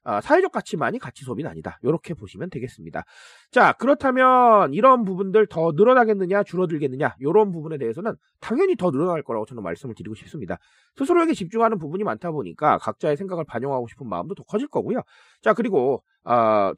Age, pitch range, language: 30-49, 140-230 Hz, Korean